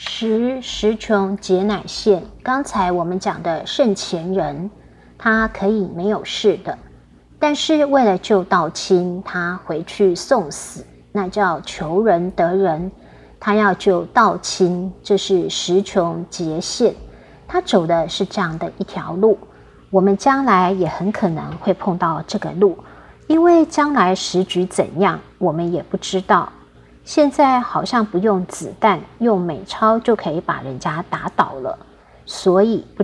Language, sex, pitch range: Chinese, female, 180-220 Hz